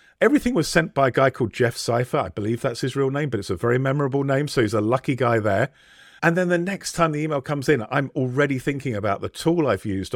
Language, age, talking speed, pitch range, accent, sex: English, 50-69, 260 wpm, 110-150 Hz, British, male